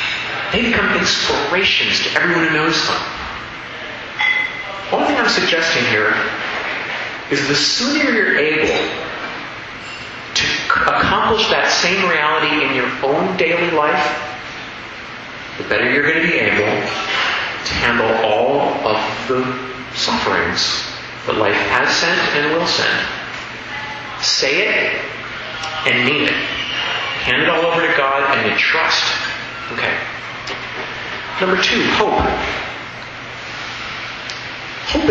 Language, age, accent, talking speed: English, 40-59, American, 115 wpm